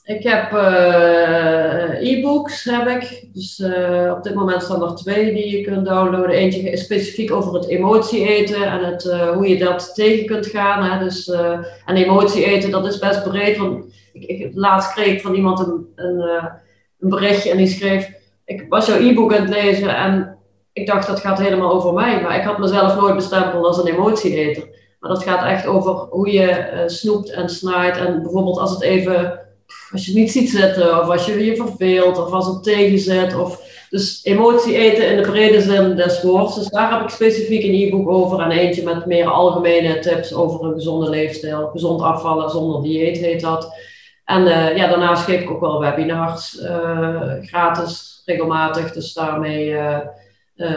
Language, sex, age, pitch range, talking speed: Dutch, female, 30-49, 170-200 Hz, 195 wpm